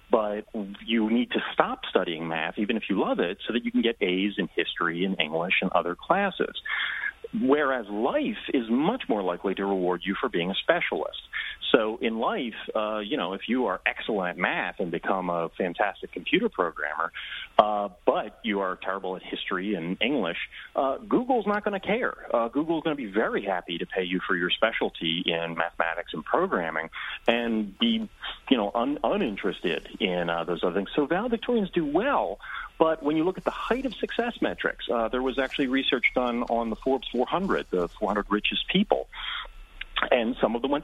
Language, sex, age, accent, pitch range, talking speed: English, male, 40-59, American, 95-155 Hz, 190 wpm